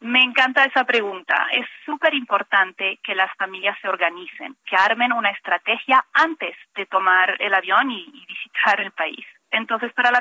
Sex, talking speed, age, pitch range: female, 170 wpm, 30-49, 200-260 Hz